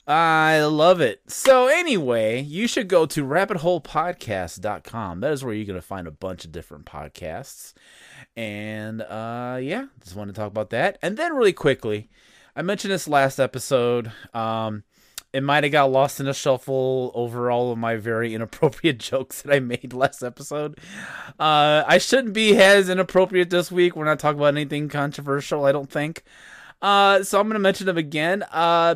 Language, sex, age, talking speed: English, male, 20-39, 180 wpm